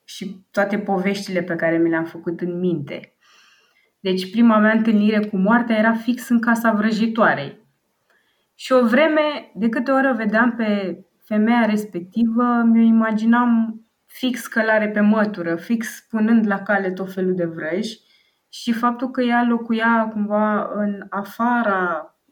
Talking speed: 140 wpm